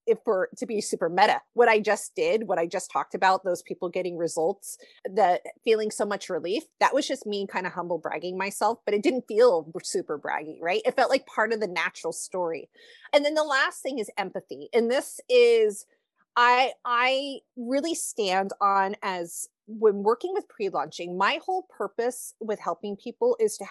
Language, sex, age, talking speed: English, female, 30-49, 190 wpm